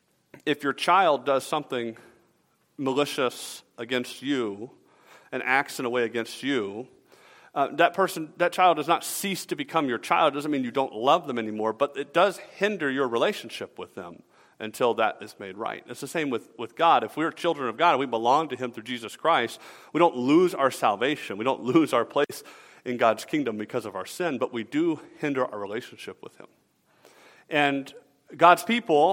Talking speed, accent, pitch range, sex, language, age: 195 wpm, American, 135-185 Hz, male, English, 40-59